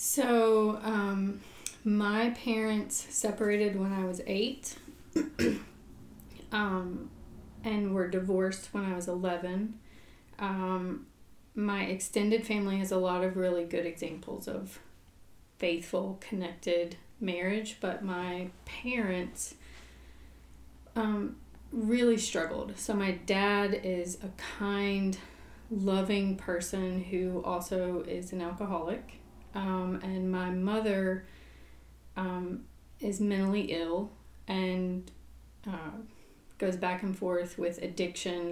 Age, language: 30-49, English